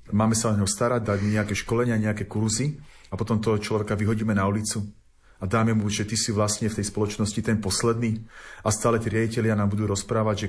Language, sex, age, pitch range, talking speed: Slovak, male, 40-59, 105-120 Hz, 210 wpm